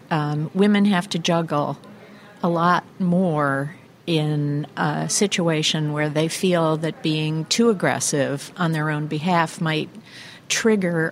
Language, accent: English, American